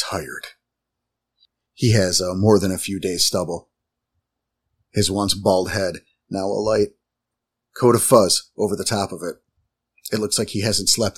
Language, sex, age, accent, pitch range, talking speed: English, male, 40-59, American, 95-115 Hz, 165 wpm